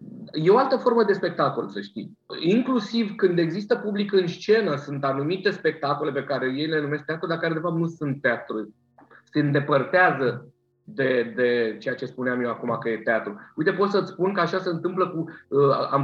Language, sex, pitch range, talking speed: Romanian, male, 130-175 Hz, 195 wpm